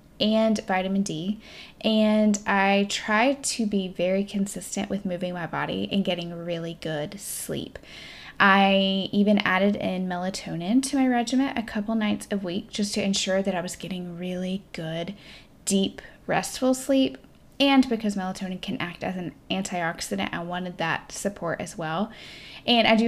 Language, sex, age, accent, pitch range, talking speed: English, female, 10-29, American, 180-215 Hz, 160 wpm